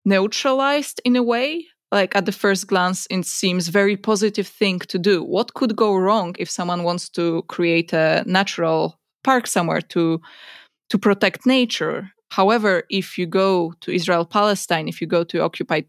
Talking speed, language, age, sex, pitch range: 170 wpm, Polish, 20-39, female, 175-220 Hz